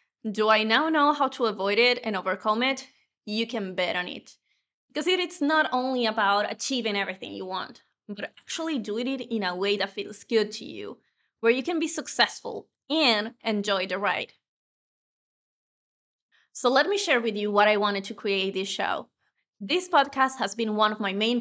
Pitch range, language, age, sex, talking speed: 210-270 Hz, English, 20-39, female, 190 wpm